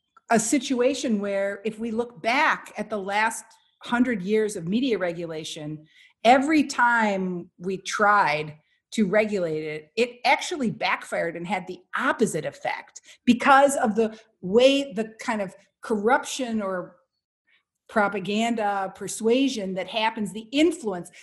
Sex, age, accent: female, 50-69, American